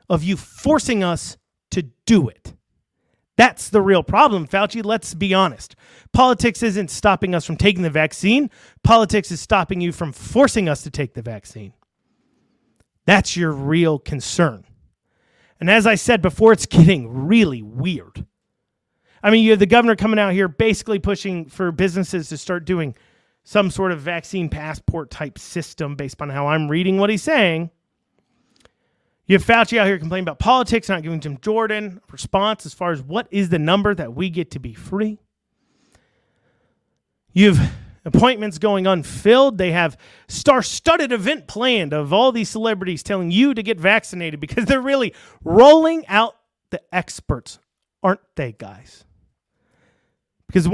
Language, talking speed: English, 160 wpm